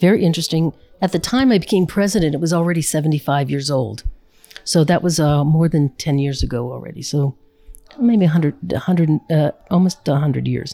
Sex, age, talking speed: female, 50-69, 180 wpm